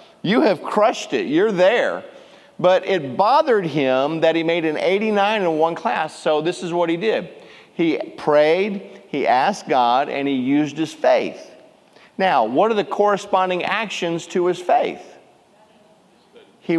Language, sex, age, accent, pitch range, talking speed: English, male, 50-69, American, 150-190 Hz, 155 wpm